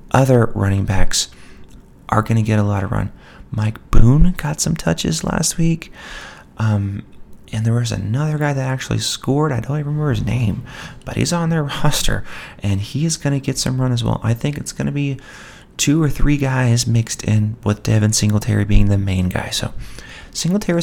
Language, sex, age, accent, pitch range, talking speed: English, male, 30-49, American, 110-145 Hz, 200 wpm